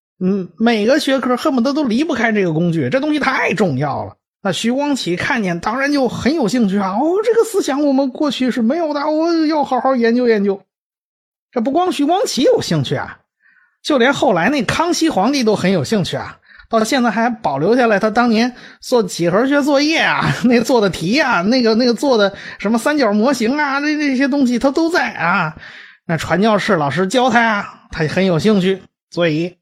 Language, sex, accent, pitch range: English, male, Chinese, 180-265 Hz